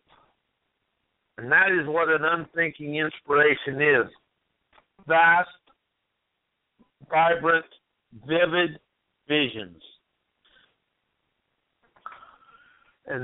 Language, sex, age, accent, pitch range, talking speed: English, male, 60-79, American, 145-180 Hz, 60 wpm